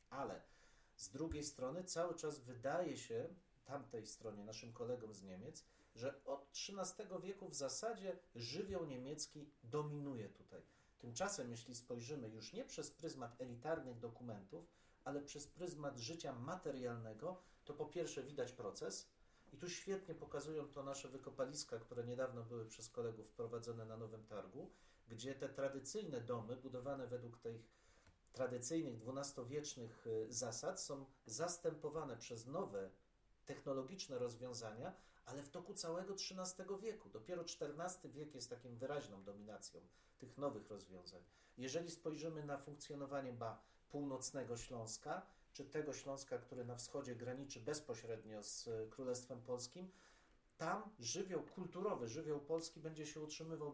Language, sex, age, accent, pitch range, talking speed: Polish, male, 40-59, native, 120-155 Hz, 130 wpm